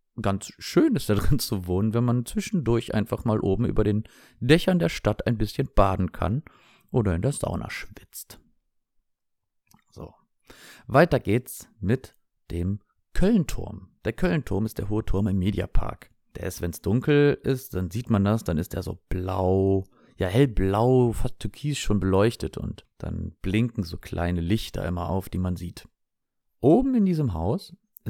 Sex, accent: male, German